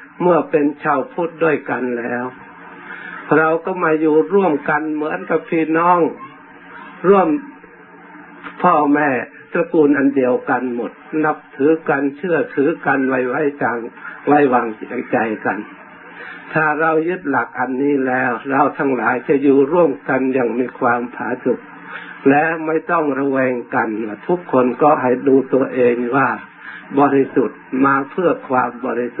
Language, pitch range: Thai, 130-160 Hz